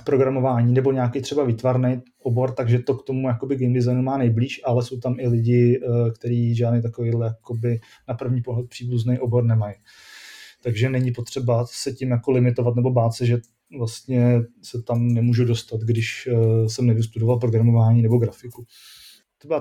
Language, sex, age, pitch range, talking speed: Czech, male, 30-49, 120-140 Hz, 155 wpm